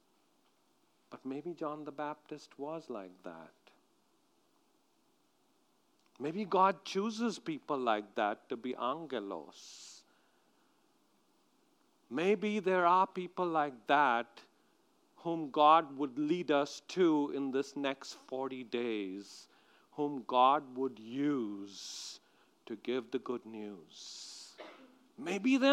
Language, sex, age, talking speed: English, male, 50-69, 105 wpm